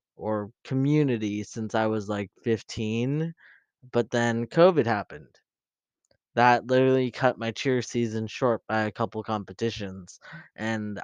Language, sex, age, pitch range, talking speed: English, male, 20-39, 110-130 Hz, 125 wpm